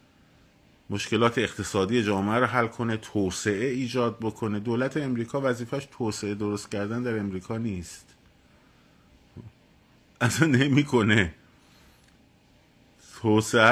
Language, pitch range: Persian, 95-125 Hz